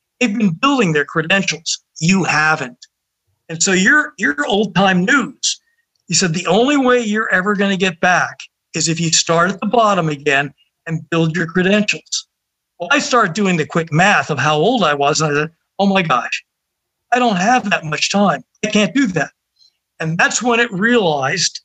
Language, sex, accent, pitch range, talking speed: English, male, American, 160-225 Hz, 190 wpm